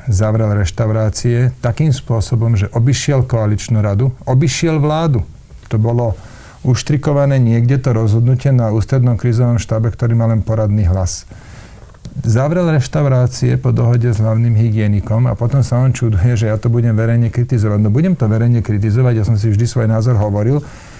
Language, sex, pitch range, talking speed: Slovak, male, 110-130 Hz, 155 wpm